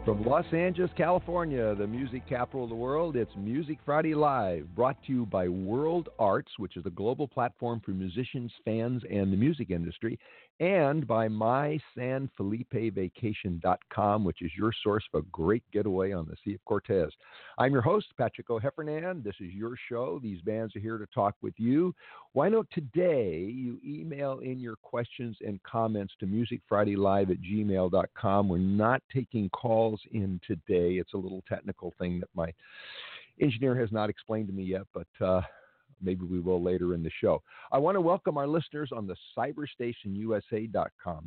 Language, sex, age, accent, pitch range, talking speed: English, male, 50-69, American, 95-135 Hz, 180 wpm